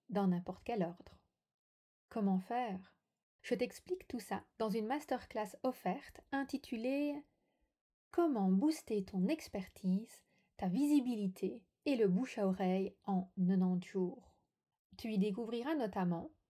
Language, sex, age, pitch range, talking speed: French, female, 30-49, 190-245 Hz, 115 wpm